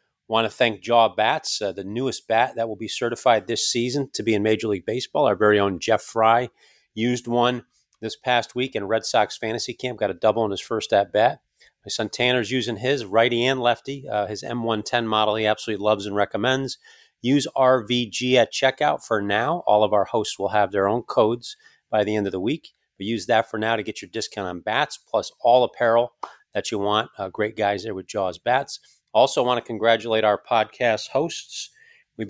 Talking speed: 210 wpm